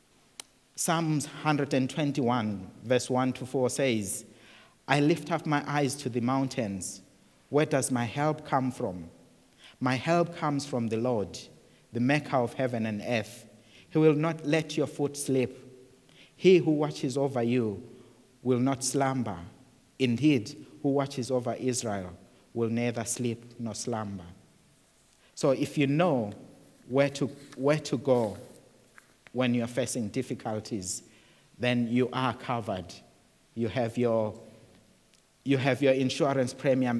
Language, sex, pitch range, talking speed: English, male, 120-140 Hz, 135 wpm